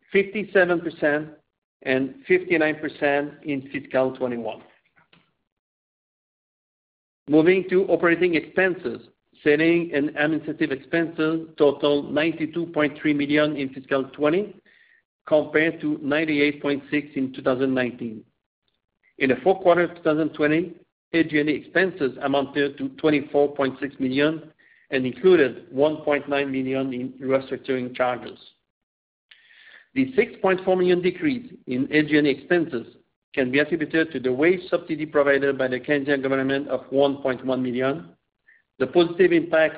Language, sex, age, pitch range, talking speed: English, male, 50-69, 135-165 Hz, 105 wpm